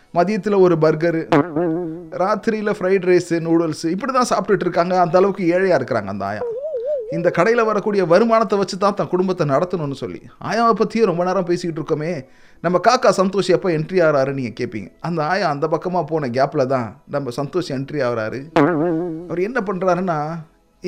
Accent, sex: native, male